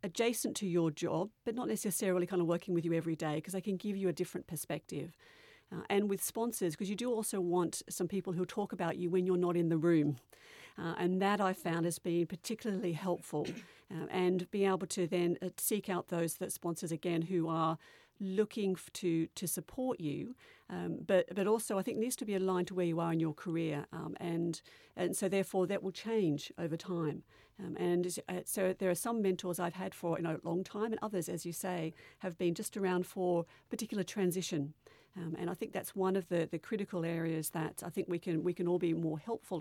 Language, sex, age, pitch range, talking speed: English, female, 50-69, 165-190 Hz, 225 wpm